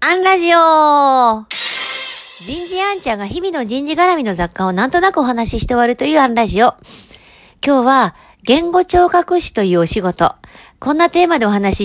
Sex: female